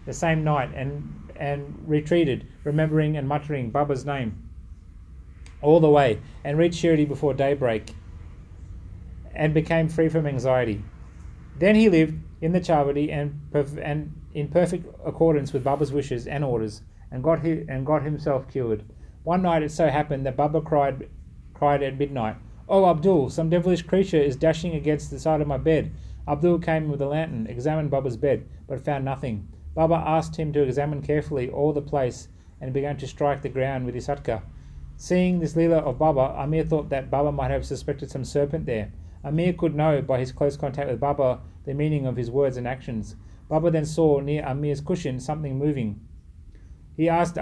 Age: 30-49